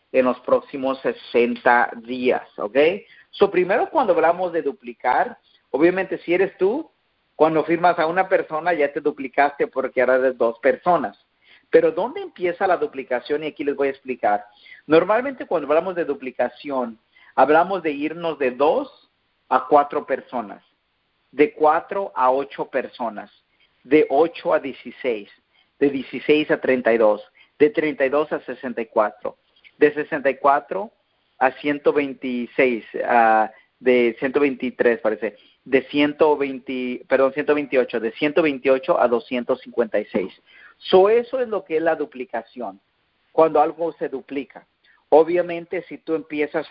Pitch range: 130-170 Hz